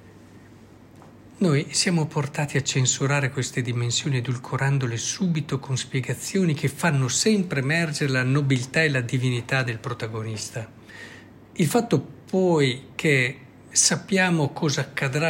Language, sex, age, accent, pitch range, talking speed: Italian, male, 60-79, native, 120-155 Hz, 115 wpm